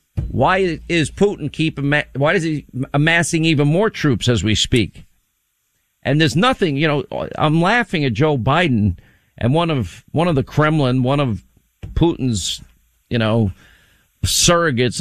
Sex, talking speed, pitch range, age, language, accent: male, 150 wpm, 115-150 Hz, 50-69, English, American